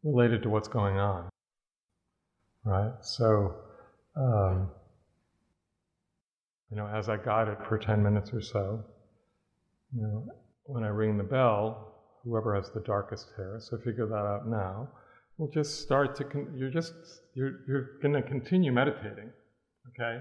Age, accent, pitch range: 50-69, American, 105-130 Hz